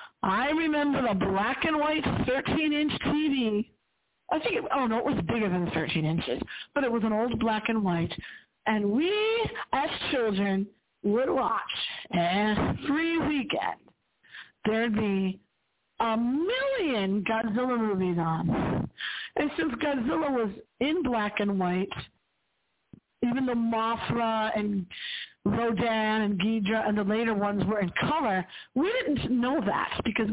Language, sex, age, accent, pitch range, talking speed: English, female, 50-69, American, 200-280 Hz, 135 wpm